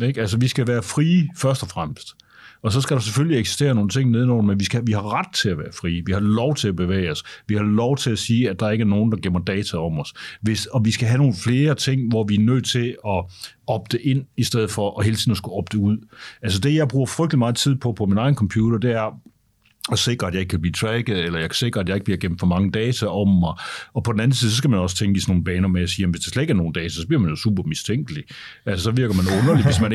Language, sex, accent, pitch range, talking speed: Danish, male, native, 100-125 Hz, 295 wpm